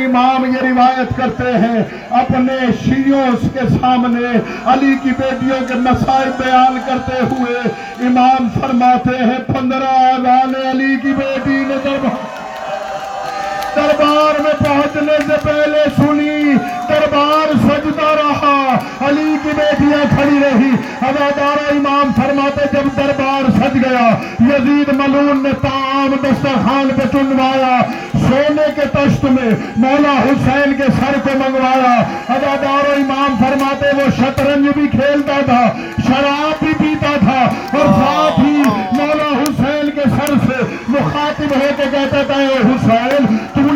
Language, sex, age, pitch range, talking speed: Urdu, male, 50-69, 255-285 Hz, 120 wpm